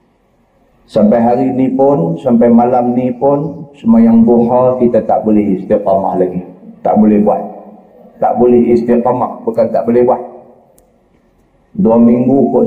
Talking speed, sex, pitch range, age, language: 135 wpm, male, 115-160 Hz, 50-69, Malay